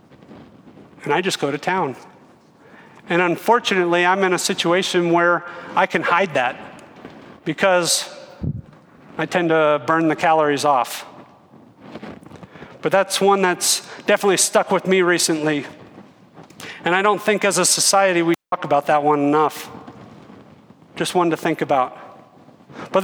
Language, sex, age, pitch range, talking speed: English, male, 40-59, 165-210 Hz, 140 wpm